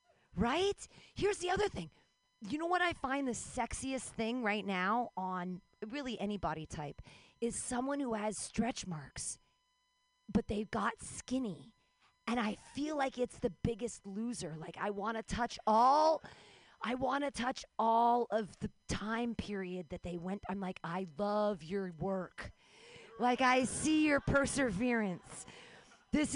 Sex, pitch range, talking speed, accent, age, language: female, 195-280 Hz, 150 wpm, American, 40-59, English